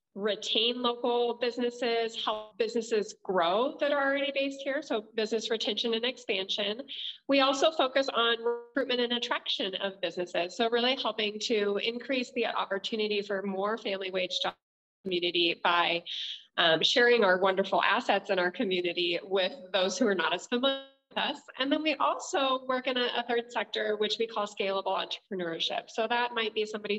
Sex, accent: female, American